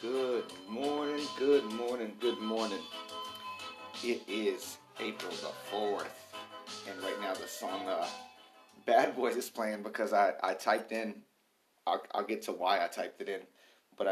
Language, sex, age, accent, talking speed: English, male, 30-49, American, 155 wpm